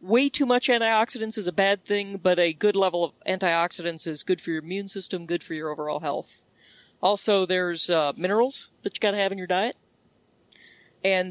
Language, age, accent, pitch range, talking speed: English, 40-59, American, 175-210 Hz, 200 wpm